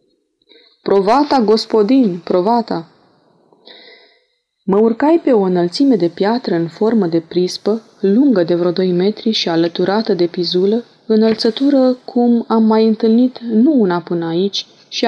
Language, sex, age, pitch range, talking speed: Romanian, female, 20-39, 175-235 Hz, 130 wpm